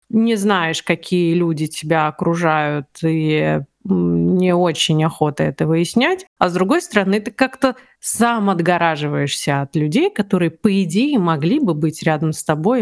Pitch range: 170-210 Hz